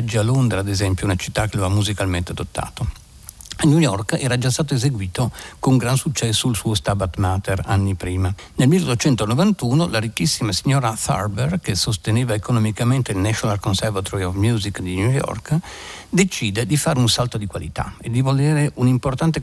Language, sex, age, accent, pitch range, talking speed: Italian, male, 60-79, native, 100-130 Hz, 175 wpm